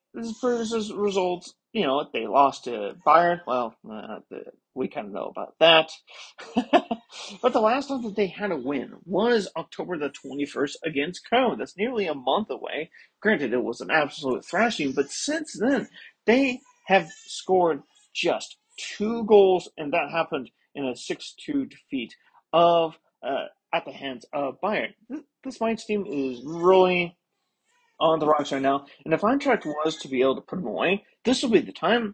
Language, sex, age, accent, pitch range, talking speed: English, male, 40-59, American, 135-215 Hz, 175 wpm